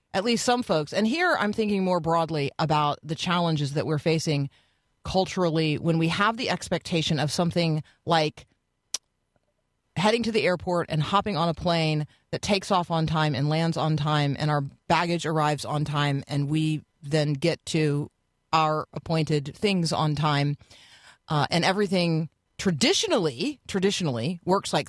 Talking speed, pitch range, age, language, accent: 160 wpm, 145-185 Hz, 40-59, English, American